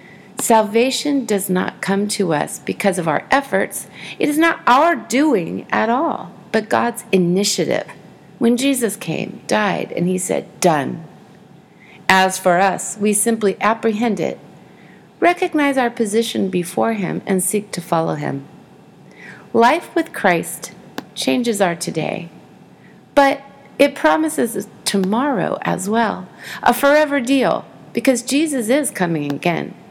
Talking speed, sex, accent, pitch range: 130 wpm, female, American, 185-250 Hz